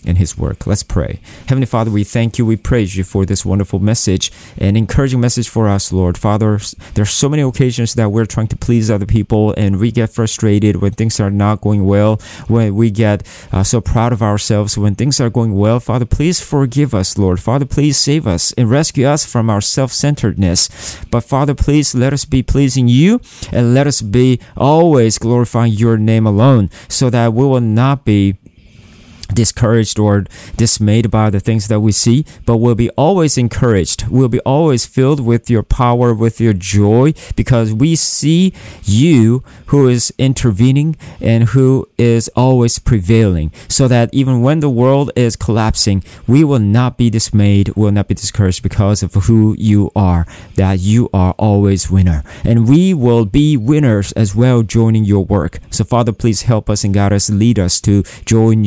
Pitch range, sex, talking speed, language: 100-125 Hz, male, 185 wpm, English